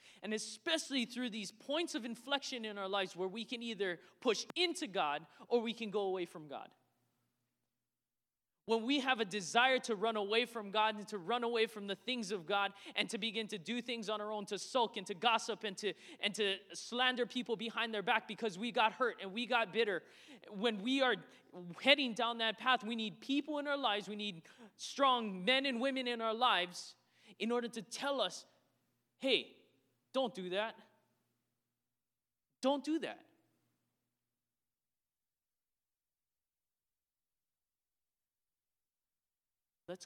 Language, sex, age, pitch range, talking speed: English, male, 20-39, 190-235 Hz, 165 wpm